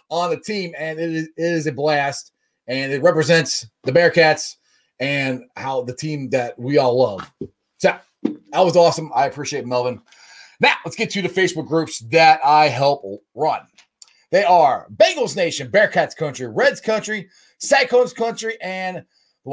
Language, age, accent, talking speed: English, 30-49, American, 160 wpm